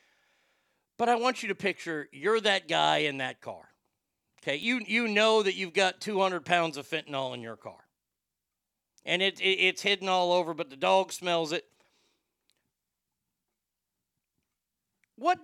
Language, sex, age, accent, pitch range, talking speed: English, male, 50-69, American, 180-240 Hz, 150 wpm